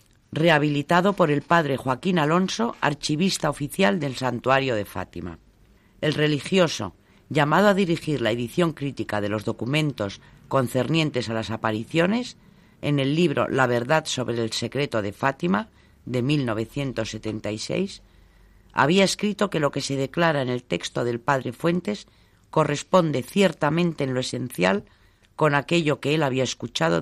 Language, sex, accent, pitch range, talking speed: Spanish, female, Spanish, 110-175 Hz, 140 wpm